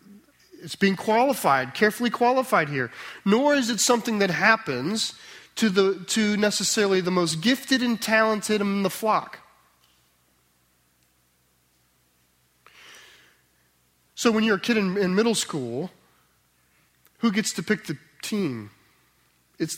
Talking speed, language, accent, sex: 120 wpm, English, American, male